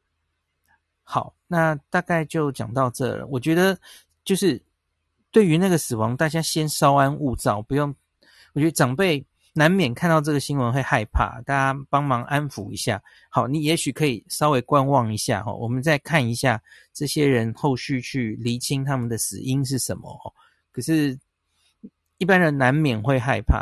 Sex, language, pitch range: male, Chinese, 115-150 Hz